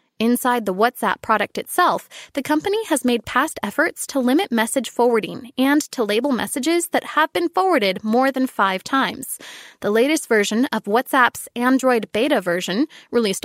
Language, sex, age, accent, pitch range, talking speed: English, female, 20-39, American, 230-305 Hz, 160 wpm